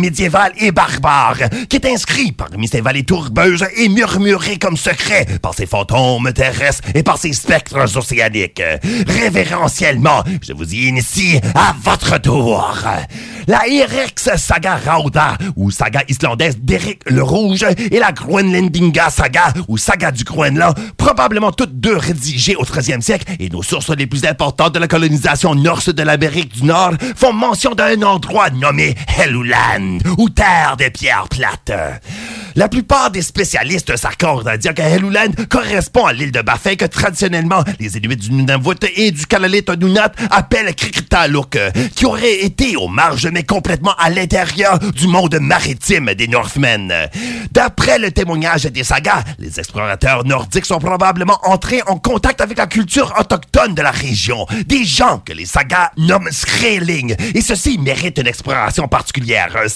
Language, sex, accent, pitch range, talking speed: French, male, French, 135-200 Hz, 155 wpm